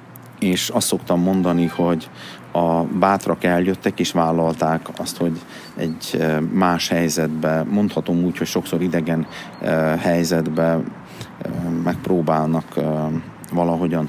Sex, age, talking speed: male, 30-49, 100 wpm